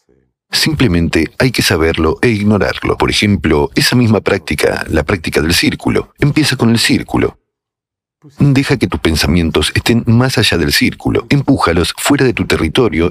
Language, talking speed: Spanish, 150 wpm